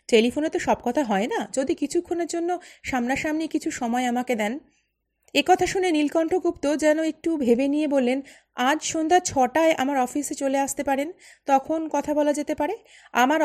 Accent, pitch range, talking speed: native, 230-310 Hz, 160 wpm